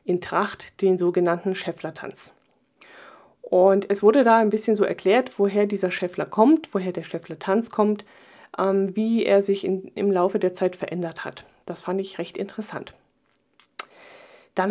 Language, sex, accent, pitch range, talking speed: German, female, German, 185-240 Hz, 155 wpm